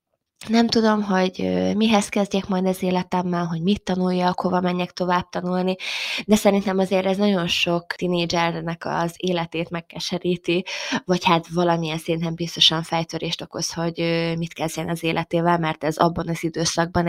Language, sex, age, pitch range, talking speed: Hungarian, female, 20-39, 165-190 Hz, 150 wpm